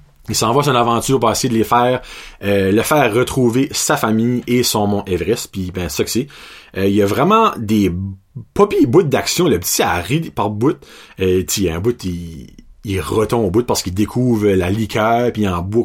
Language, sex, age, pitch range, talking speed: French, male, 30-49, 110-160 Hz, 225 wpm